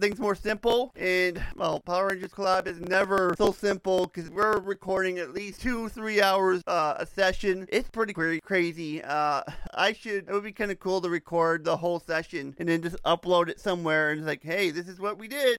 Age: 30-49